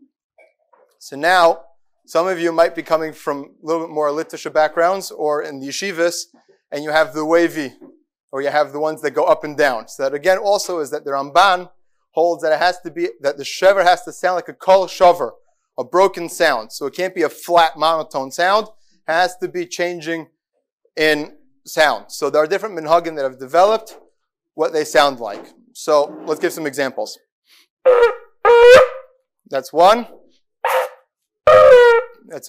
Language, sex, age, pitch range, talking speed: English, male, 30-49, 155-220 Hz, 175 wpm